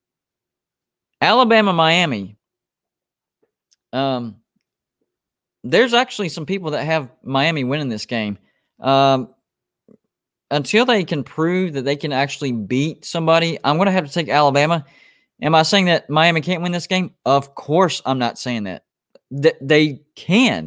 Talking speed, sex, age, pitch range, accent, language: 135 wpm, male, 20-39, 135-160 Hz, American, English